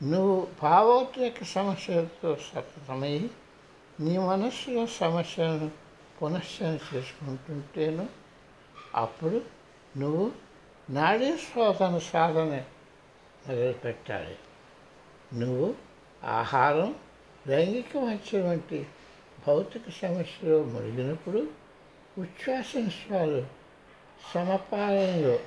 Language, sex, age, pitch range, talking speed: Telugu, male, 60-79, 135-185 Hz, 60 wpm